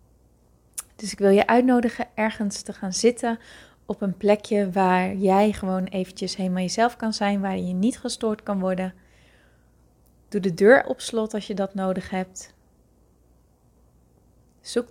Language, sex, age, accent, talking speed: Dutch, female, 30-49, Dutch, 150 wpm